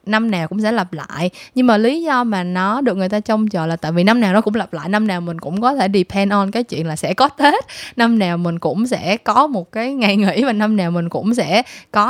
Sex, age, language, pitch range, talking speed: female, 20-39, Vietnamese, 185-250 Hz, 285 wpm